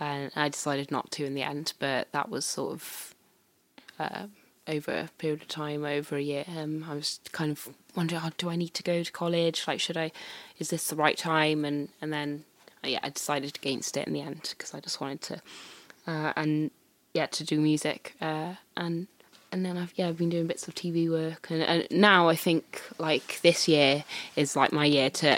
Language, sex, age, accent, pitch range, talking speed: English, female, 20-39, British, 145-165 Hz, 220 wpm